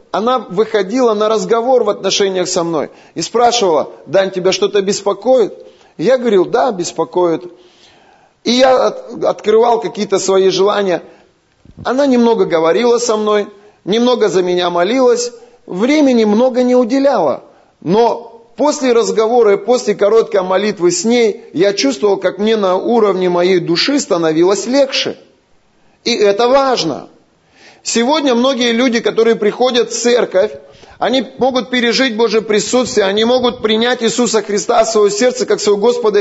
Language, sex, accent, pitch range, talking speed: Russian, male, native, 200-250 Hz, 135 wpm